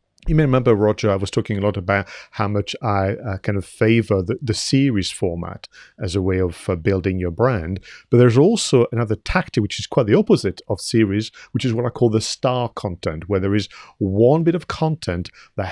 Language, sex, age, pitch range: English, male, 40-59, 95-120 Hz